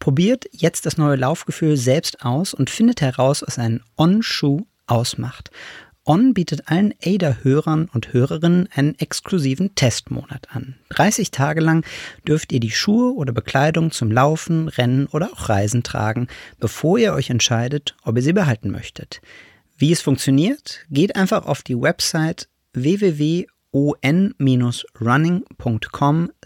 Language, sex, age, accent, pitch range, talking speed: German, male, 40-59, German, 125-170 Hz, 130 wpm